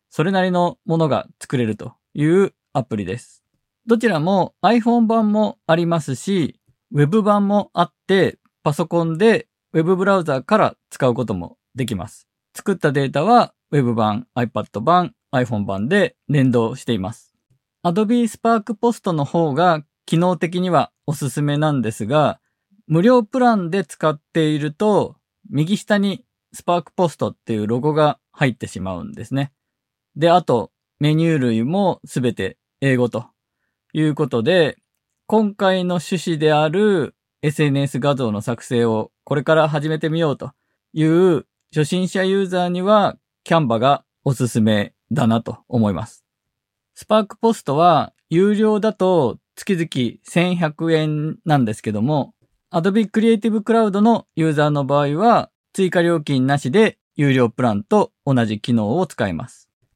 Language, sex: Japanese, male